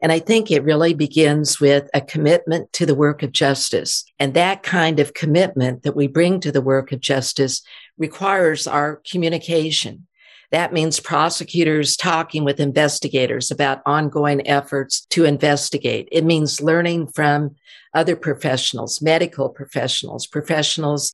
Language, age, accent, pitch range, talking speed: English, 50-69, American, 140-165 Hz, 140 wpm